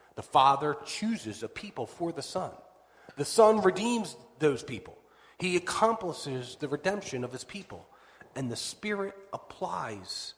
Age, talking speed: 40-59, 140 wpm